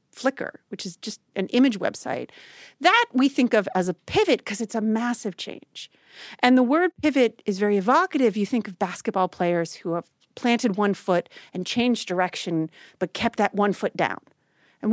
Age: 40-59